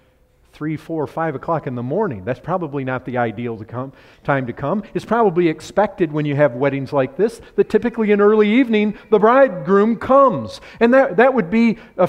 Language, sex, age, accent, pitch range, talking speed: English, male, 40-59, American, 165-265 Hz, 210 wpm